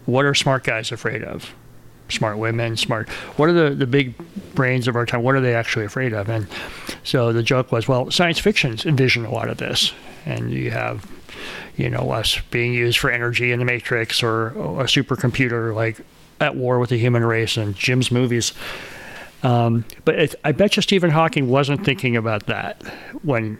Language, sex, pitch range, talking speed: English, male, 110-135 Hz, 190 wpm